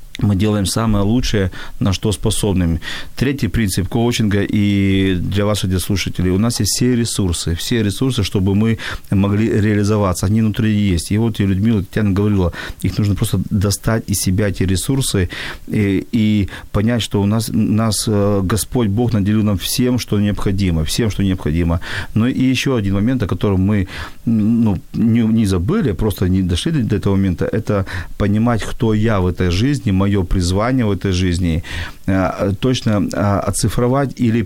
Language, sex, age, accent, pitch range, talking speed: Ukrainian, male, 40-59, native, 95-115 Hz, 165 wpm